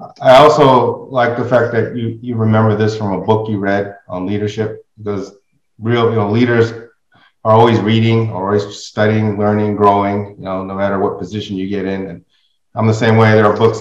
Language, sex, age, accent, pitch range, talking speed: English, male, 30-49, American, 105-120 Hz, 200 wpm